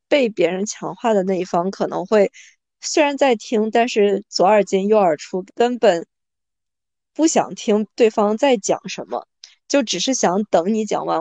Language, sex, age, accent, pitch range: Chinese, female, 20-39, native, 200-255 Hz